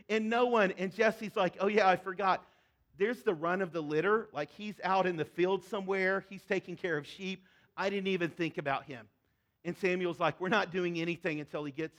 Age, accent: 40-59, American